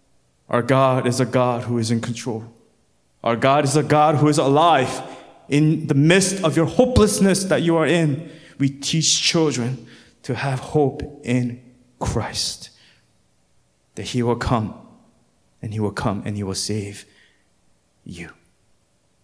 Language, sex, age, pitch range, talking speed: English, male, 20-39, 130-215 Hz, 150 wpm